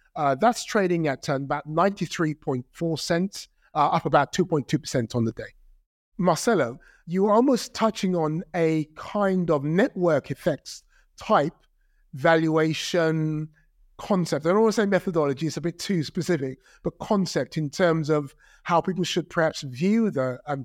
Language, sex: English, male